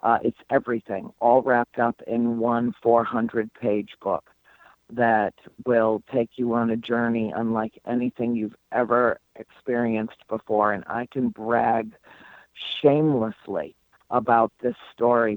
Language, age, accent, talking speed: English, 50-69, American, 120 wpm